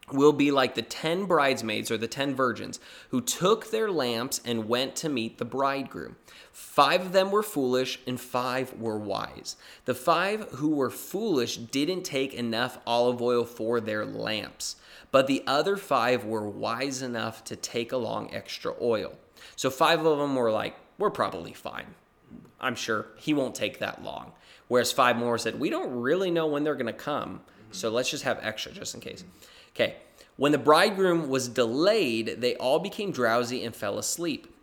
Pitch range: 115-150 Hz